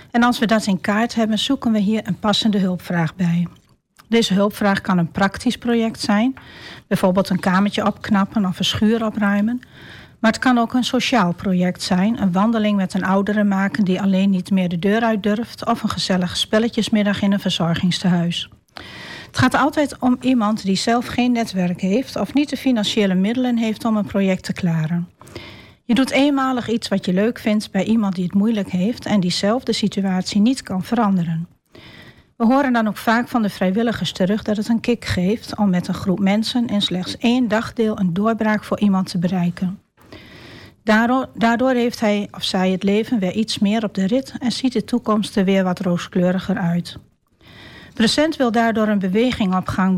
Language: Dutch